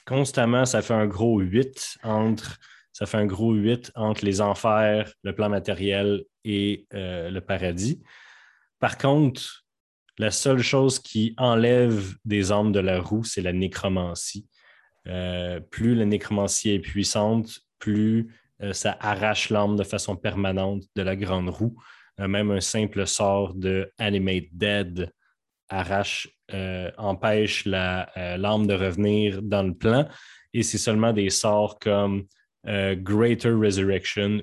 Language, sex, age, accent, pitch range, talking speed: French, male, 30-49, Canadian, 100-115 Hz, 140 wpm